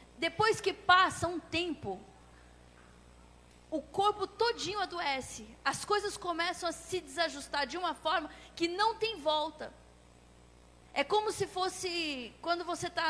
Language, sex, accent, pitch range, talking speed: Portuguese, female, Brazilian, 310-390 Hz, 135 wpm